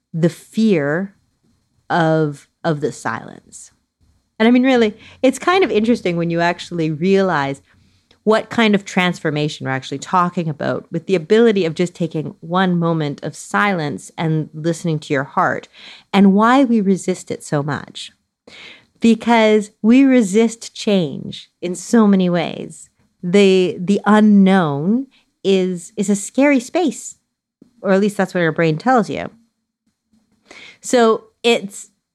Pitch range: 165-225 Hz